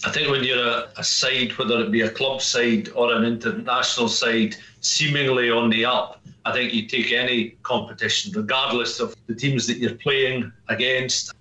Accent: British